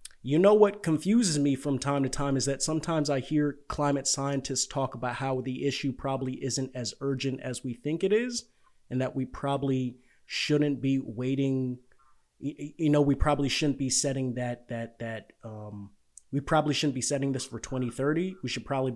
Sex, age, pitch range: male, 30-49, 125-145 Hz